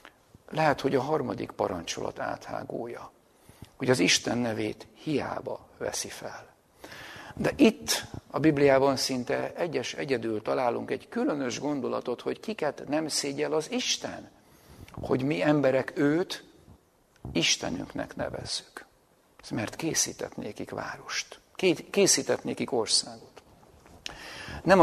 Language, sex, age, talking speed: Hungarian, male, 50-69, 100 wpm